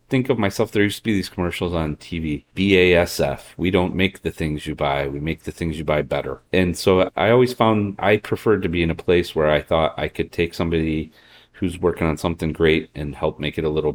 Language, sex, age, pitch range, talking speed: English, male, 40-59, 75-90 Hz, 255 wpm